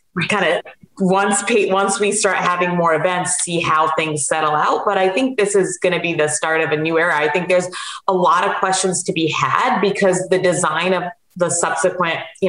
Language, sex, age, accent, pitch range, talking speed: English, female, 30-49, American, 160-200 Hz, 220 wpm